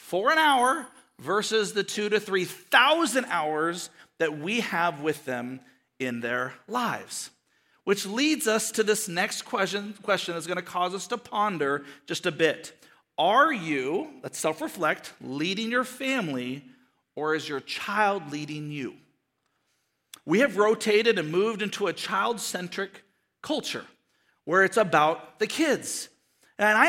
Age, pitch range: 50-69, 180-245 Hz